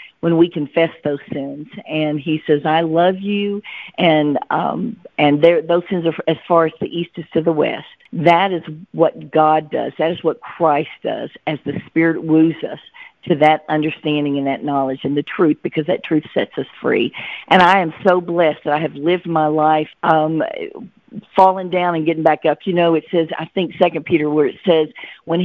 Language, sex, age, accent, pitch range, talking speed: English, female, 50-69, American, 155-180 Hz, 205 wpm